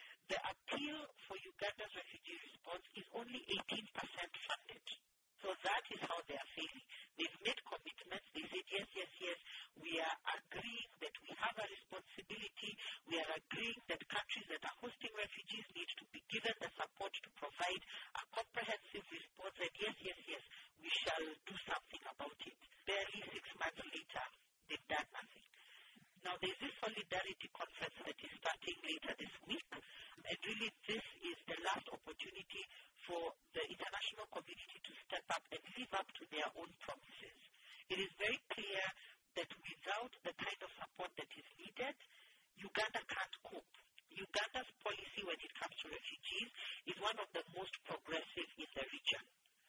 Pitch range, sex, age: 185-235 Hz, female, 50-69